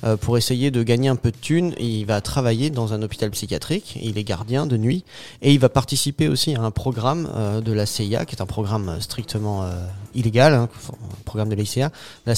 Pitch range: 110-130 Hz